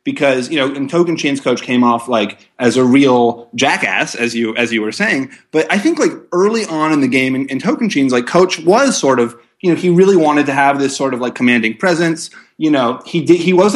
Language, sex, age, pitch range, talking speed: English, male, 30-49, 120-165 Hz, 250 wpm